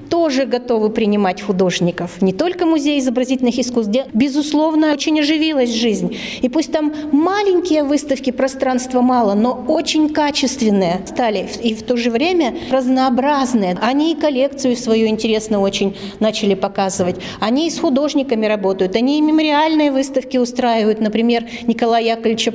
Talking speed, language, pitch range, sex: 140 wpm, Russian, 215-275 Hz, female